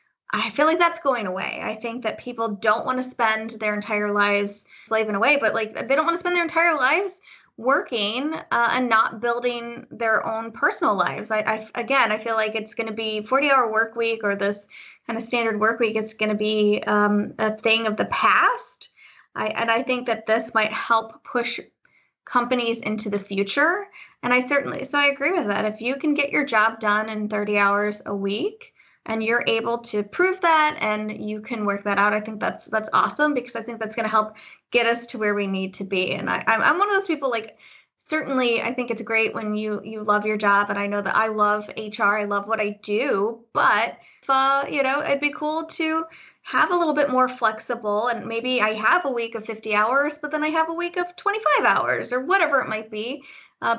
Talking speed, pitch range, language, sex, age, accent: 220 wpm, 215-270 Hz, English, female, 20-39, American